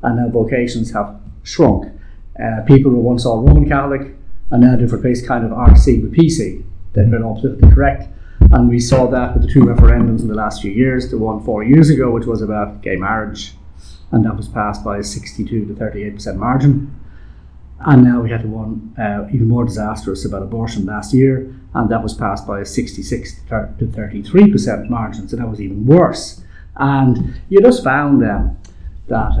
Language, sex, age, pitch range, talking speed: English, male, 30-49, 100-125 Hz, 185 wpm